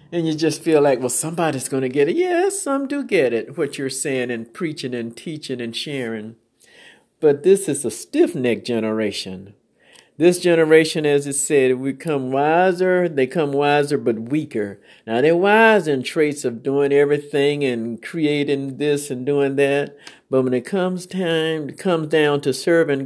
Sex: male